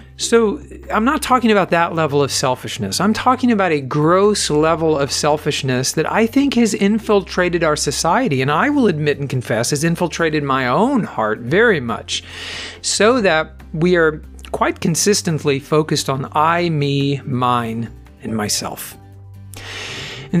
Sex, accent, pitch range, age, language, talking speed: male, American, 130-200 Hz, 50-69, English, 150 wpm